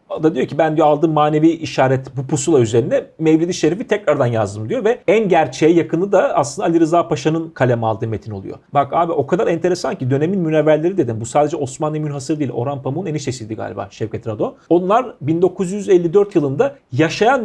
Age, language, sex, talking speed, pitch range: 40-59, Turkish, male, 185 wpm, 125-165 Hz